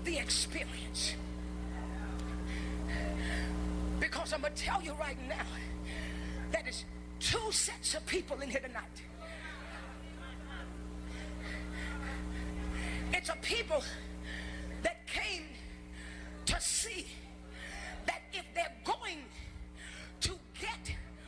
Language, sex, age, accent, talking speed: English, female, 40-59, American, 85 wpm